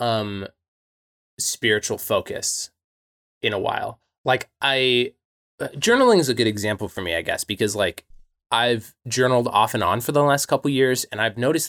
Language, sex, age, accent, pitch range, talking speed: English, male, 20-39, American, 105-130 Hz, 175 wpm